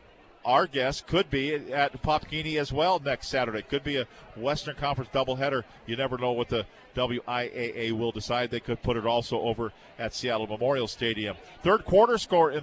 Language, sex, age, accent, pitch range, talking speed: English, male, 50-69, American, 125-155 Hz, 180 wpm